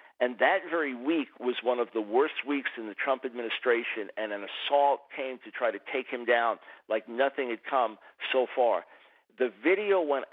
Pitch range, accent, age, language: 120-165 Hz, American, 50-69, English